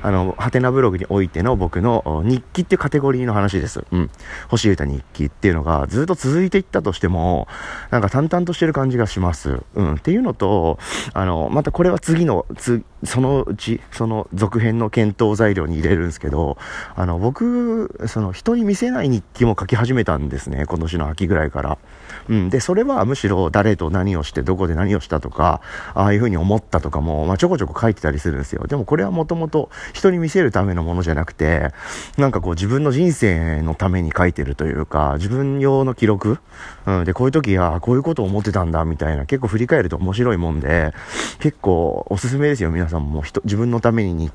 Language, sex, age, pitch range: Japanese, male, 40-59, 85-130 Hz